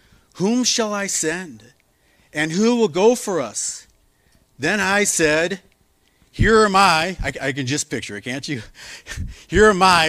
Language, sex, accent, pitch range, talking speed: English, male, American, 105-145 Hz, 160 wpm